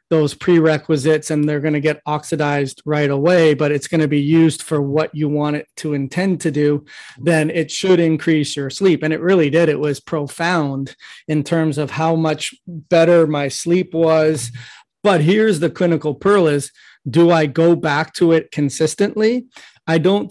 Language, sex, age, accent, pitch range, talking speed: English, male, 30-49, American, 150-170 Hz, 185 wpm